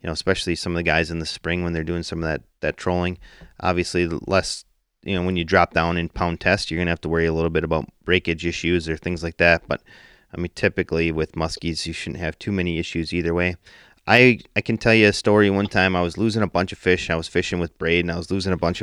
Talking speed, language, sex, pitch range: 275 wpm, English, male, 85-95 Hz